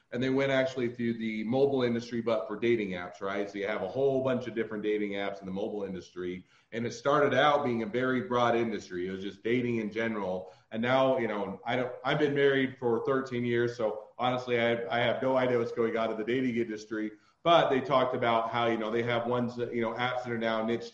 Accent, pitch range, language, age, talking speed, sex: American, 110-125 Hz, English, 40-59, 245 wpm, male